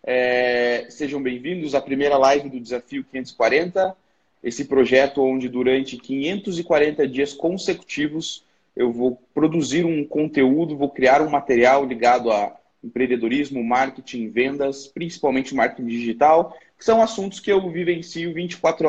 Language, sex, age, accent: Portuguese, male, 20-39, Brazilian